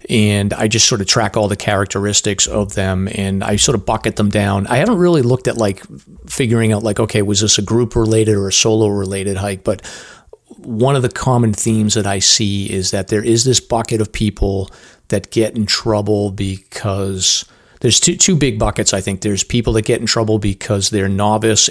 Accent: American